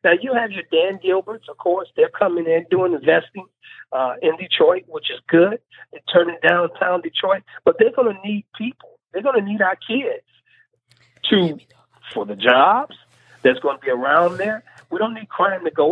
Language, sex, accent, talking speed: English, male, American, 190 wpm